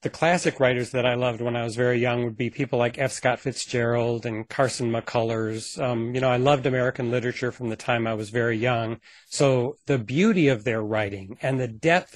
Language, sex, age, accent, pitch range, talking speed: English, male, 40-59, American, 120-140 Hz, 215 wpm